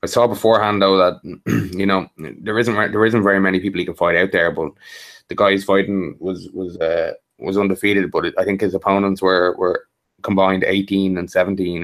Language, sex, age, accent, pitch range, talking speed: English, male, 20-39, Irish, 95-105 Hz, 210 wpm